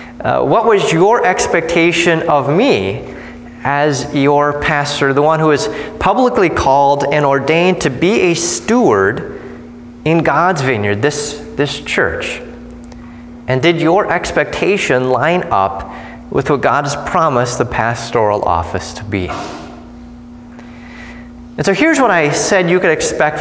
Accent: American